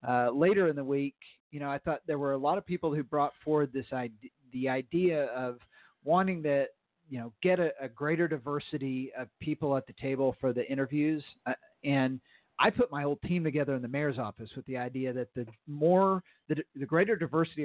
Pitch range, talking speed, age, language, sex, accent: 130-155 Hz, 210 wpm, 40-59, English, male, American